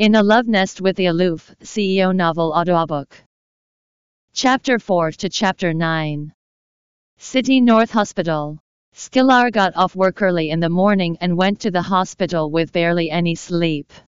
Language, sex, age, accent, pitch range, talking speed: English, female, 40-59, American, 165-205 Hz, 150 wpm